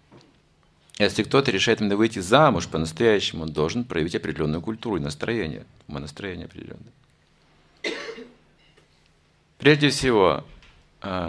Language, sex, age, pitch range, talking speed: Russian, male, 50-69, 95-140 Hz, 95 wpm